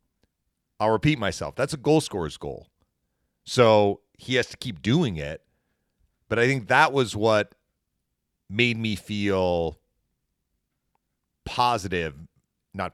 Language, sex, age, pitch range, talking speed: English, male, 40-59, 80-110 Hz, 120 wpm